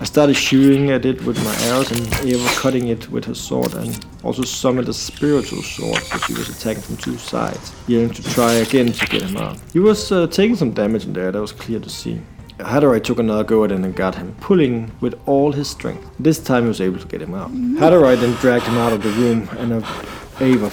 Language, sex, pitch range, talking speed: English, male, 110-150 Hz, 235 wpm